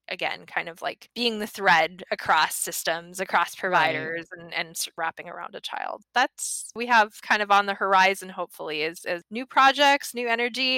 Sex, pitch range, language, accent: female, 170-215 Hz, English, American